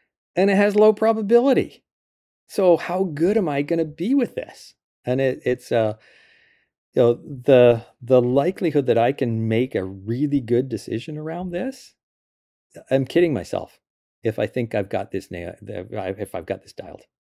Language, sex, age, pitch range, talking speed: English, male, 40-59, 100-130 Hz, 165 wpm